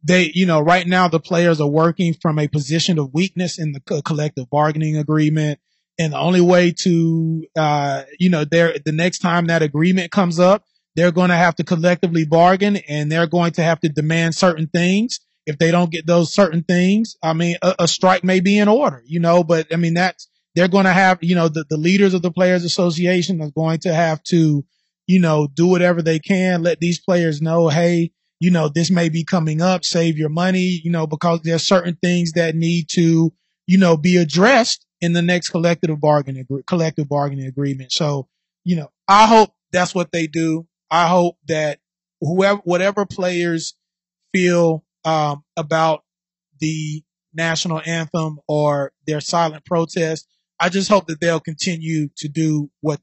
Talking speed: 190 wpm